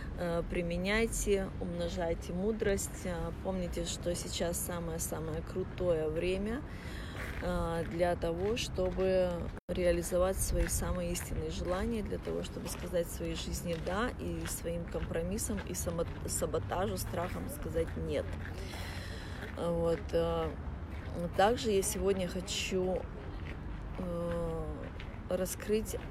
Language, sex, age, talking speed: Russian, female, 20-39, 90 wpm